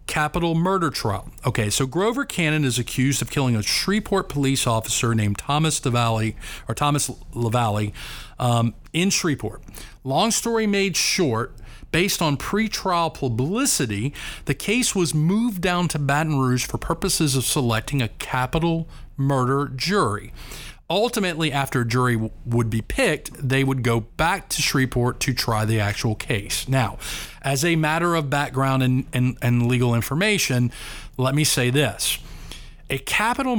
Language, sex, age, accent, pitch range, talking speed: English, male, 40-59, American, 120-155 Hz, 150 wpm